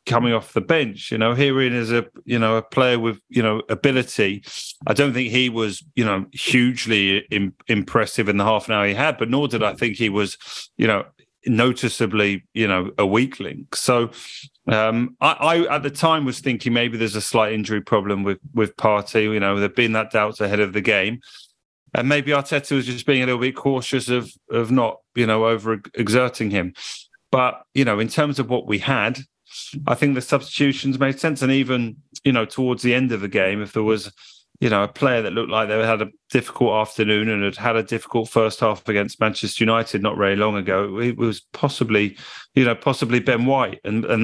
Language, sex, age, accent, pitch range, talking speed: English, male, 30-49, British, 105-125 Hz, 215 wpm